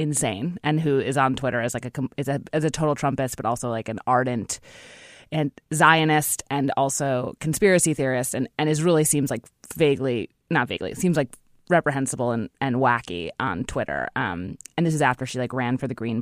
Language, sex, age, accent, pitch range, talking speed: English, female, 20-39, American, 125-155 Hz, 205 wpm